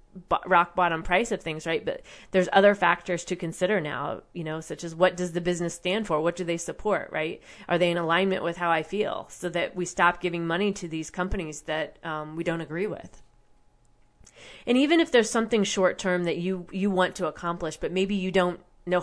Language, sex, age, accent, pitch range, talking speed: English, female, 30-49, American, 175-200 Hz, 215 wpm